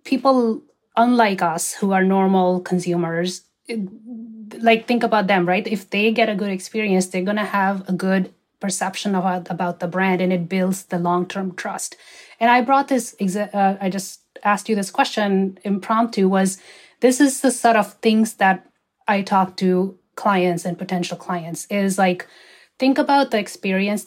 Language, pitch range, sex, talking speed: English, 185-225 Hz, female, 170 wpm